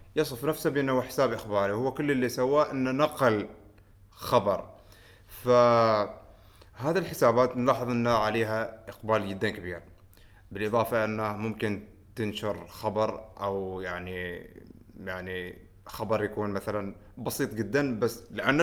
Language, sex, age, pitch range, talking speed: Arabic, male, 20-39, 100-125 Hz, 115 wpm